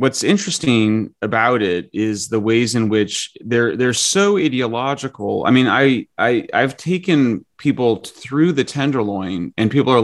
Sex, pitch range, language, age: male, 105-145 Hz, English, 30-49